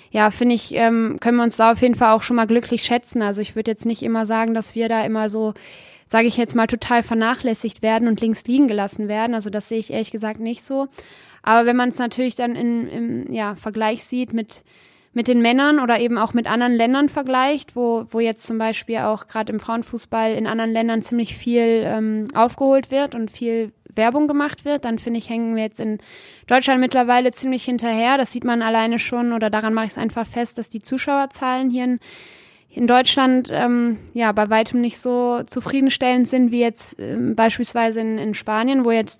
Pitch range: 220-245 Hz